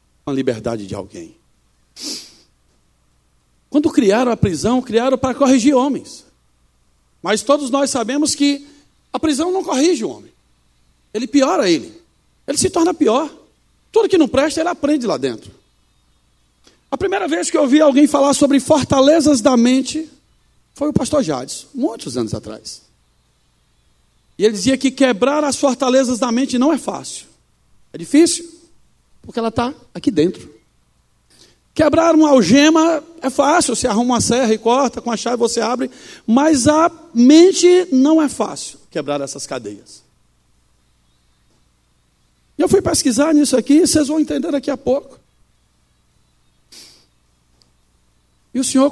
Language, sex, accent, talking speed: Portuguese, male, Brazilian, 140 wpm